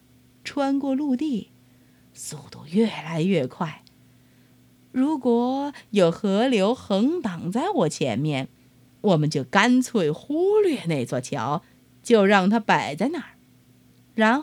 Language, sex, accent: Chinese, female, native